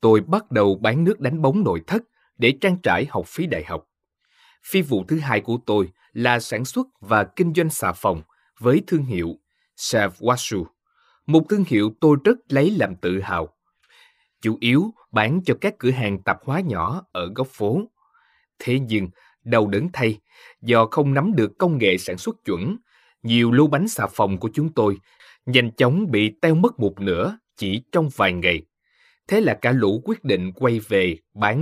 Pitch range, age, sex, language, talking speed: 105-165 Hz, 20-39, male, Vietnamese, 190 wpm